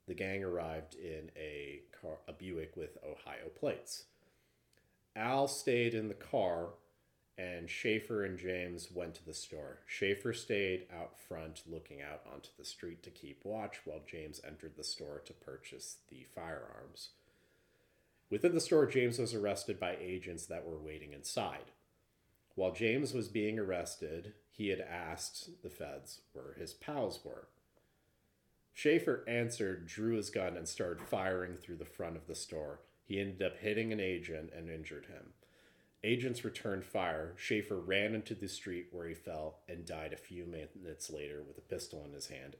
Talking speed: 165 wpm